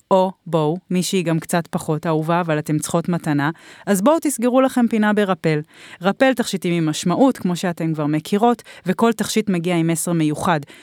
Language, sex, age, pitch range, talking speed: Hebrew, female, 30-49, 170-230 Hz, 170 wpm